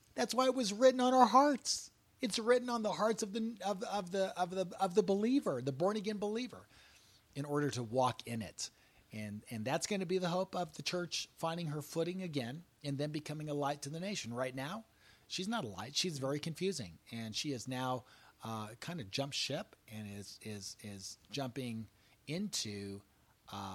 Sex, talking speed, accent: male, 200 wpm, American